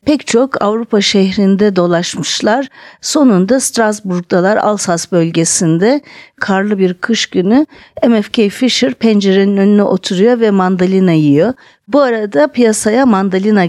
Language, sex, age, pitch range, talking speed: Turkish, female, 50-69, 185-250 Hz, 110 wpm